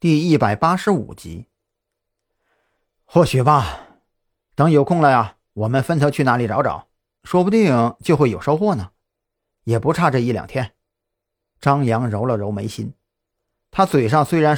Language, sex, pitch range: Chinese, male, 115-160 Hz